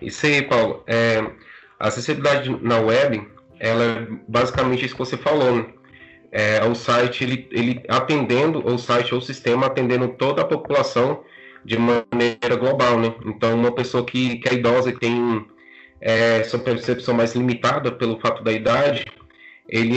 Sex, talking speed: male, 160 wpm